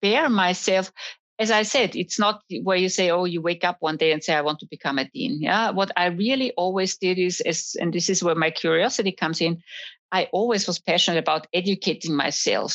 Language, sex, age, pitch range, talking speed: English, female, 50-69, 165-205 Hz, 220 wpm